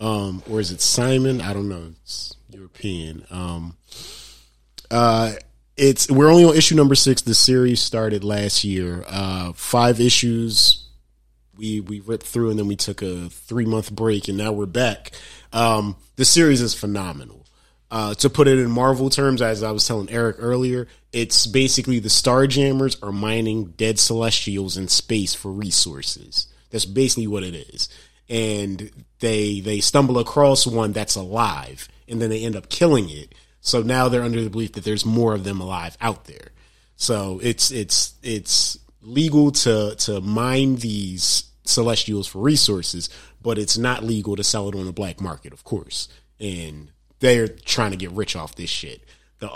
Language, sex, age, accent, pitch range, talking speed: English, male, 30-49, American, 95-120 Hz, 175 wpm